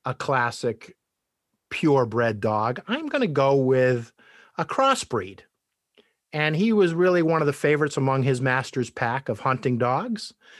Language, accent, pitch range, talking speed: English, American, 130-165 Hz, 145 wpm